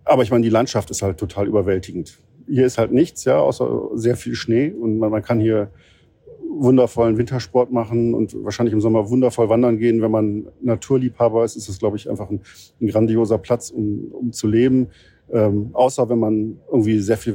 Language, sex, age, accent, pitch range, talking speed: German, male, 50-69, German, 105-120 Hz, 195 wpm